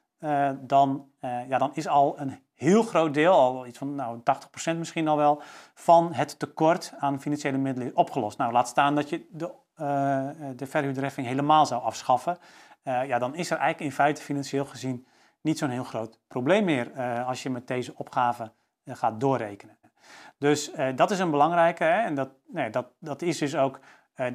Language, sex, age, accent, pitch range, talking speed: Dutch, male, 40-59, Dutch, 125-155 Hz, 195 wpm